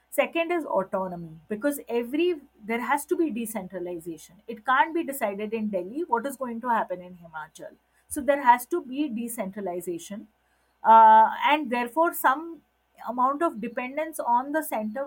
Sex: female